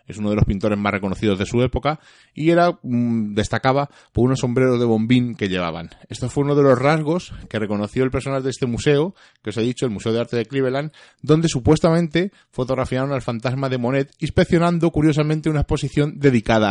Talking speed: 200 wpm